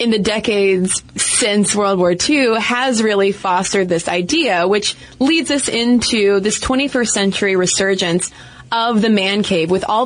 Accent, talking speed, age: American, 155 wpm, 20-39